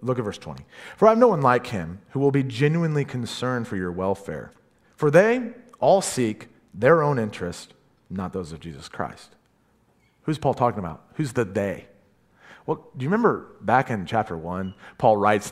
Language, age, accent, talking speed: English, 30-49, American, 185 wpm